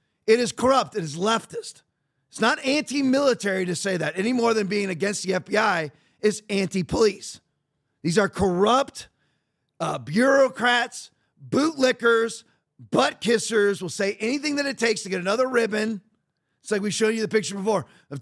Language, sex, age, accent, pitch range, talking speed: English, male, 40-59, American, 180-240 Hz, 155 wpm